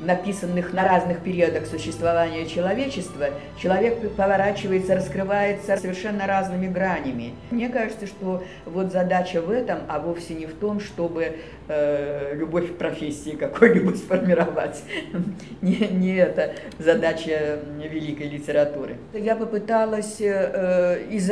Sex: female